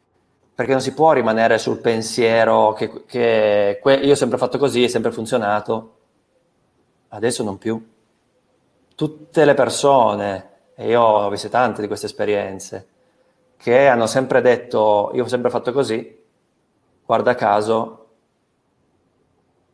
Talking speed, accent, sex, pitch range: 130 wpm, native, male, 105-130 Hz